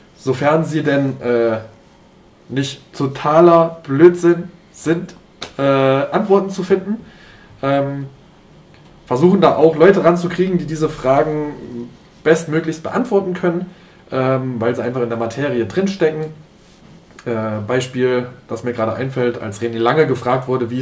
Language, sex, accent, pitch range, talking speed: German, male, German, 125-175 Hz, 125 wpm